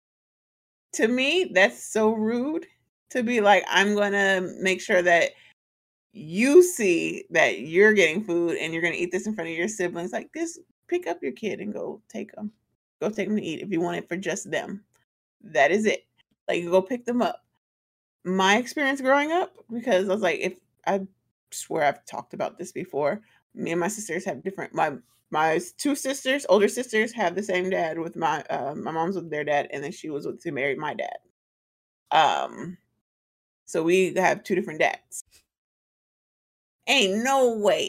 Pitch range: 180-270 Hz